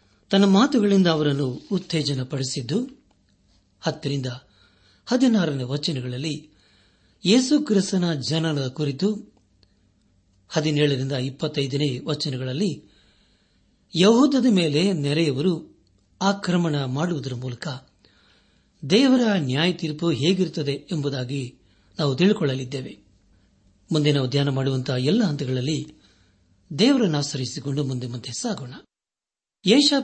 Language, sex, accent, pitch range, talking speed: Kannada, male, native, 130-195 Hz, 70 wpm